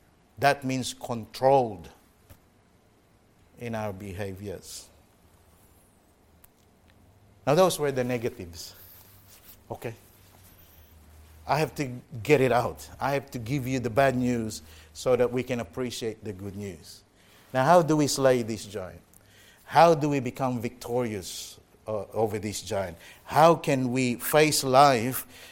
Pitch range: 105-140 Hz